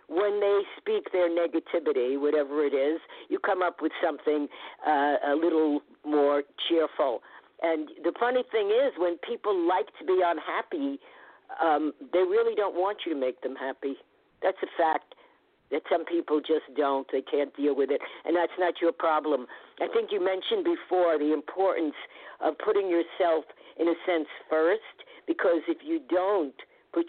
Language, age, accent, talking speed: English, 50-69, American, 170 wpm